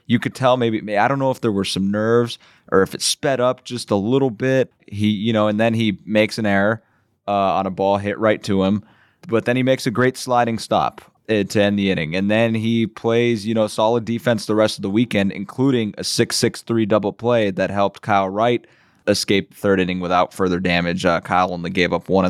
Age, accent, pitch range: 20-39, American, 95-115 Hz